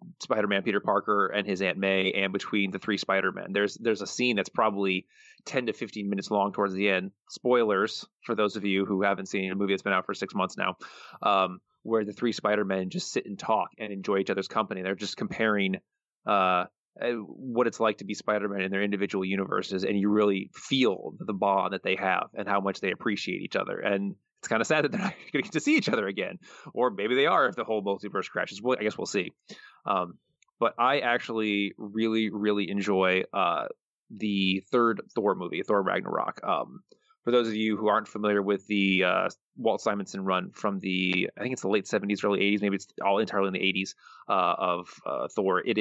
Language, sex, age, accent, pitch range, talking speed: English, male, 20-39, American, 95-110 Hz, 220 wpm